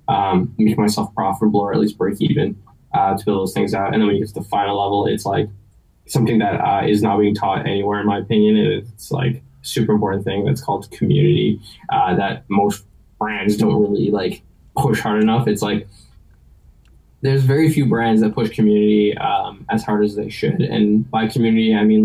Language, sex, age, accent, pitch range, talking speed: English, male, 10-29, American, 105-115 Hz, 205 wpm